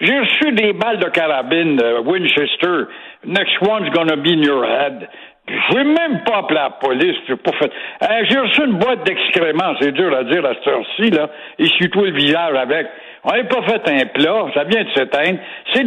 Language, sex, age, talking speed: French, male, 60-79, 200 wpm